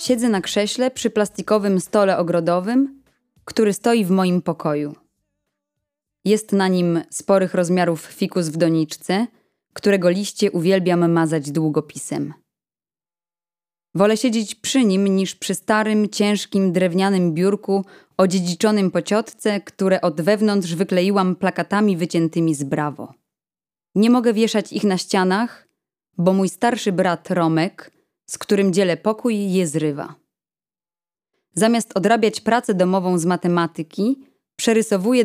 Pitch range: 170-205 Hz